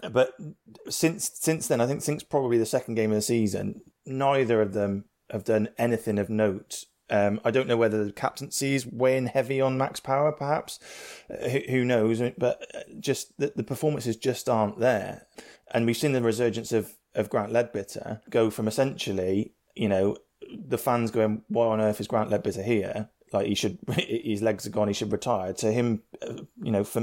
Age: 20-39